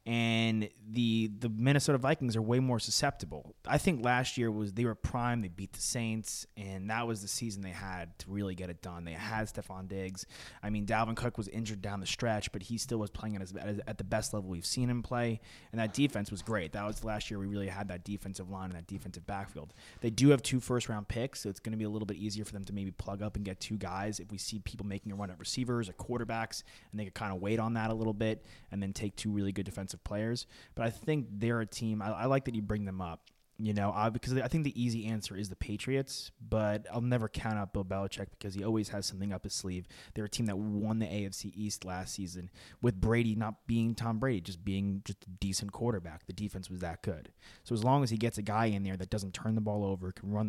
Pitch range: 95-115 Hz